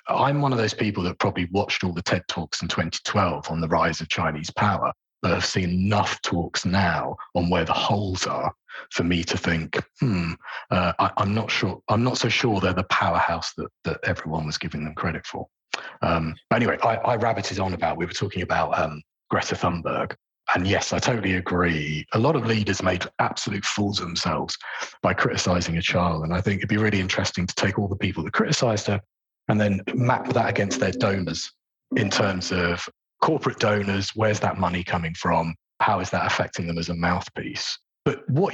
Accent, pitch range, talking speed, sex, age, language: British, 85-110 Hz, 205 wpm, male, 30-49, English